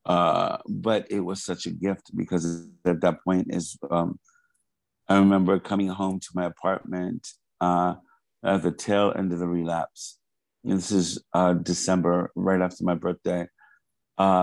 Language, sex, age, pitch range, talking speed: English, male, 50-69, 85-95 Hz, 160 wpm